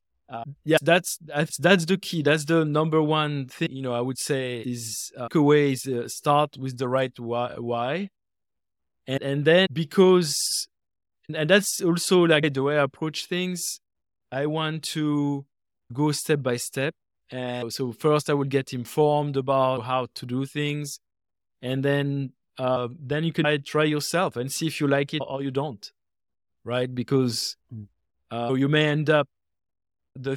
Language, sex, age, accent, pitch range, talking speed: English, male, 20-39, French, 120-150 Hz, 170 wpm